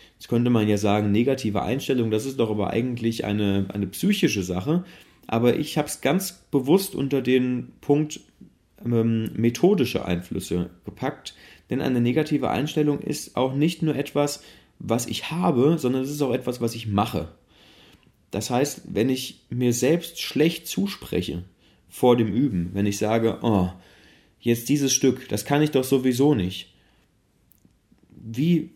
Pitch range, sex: 100-140 Hz, male